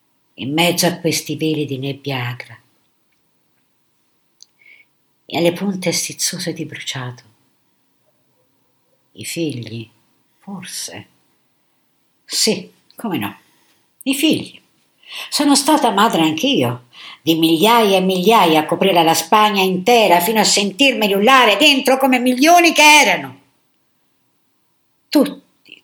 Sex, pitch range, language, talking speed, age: female, 155-230 Hz, Italian, 105 wpm, 60-79